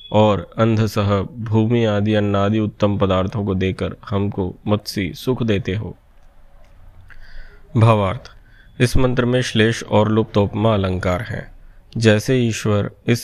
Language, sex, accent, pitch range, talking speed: Hindi, male, native, 100-115 Hz, 115 wpm